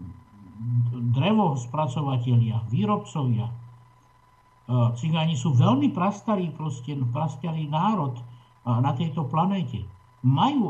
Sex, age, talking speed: male, 60-79, 75 wpm